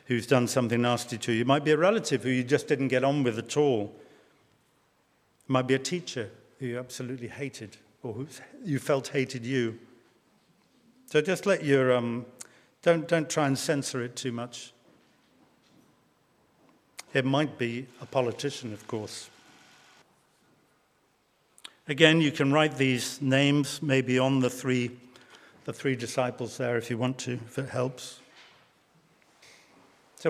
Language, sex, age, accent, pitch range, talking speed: English, male, 50-69, British, 125-170 Hz, 155 wpm